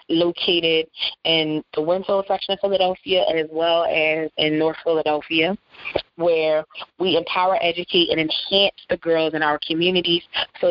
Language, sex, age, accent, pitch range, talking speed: English, female, 20-39, American, 155-185 Hz, 140 wpm